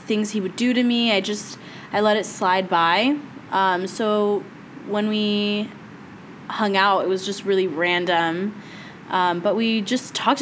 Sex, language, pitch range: female, English, 185-215 Hz